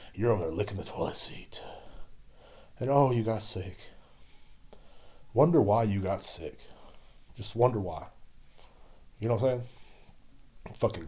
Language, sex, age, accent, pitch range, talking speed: English, male, 30-49, American, 90-105 Hz, 140 wpm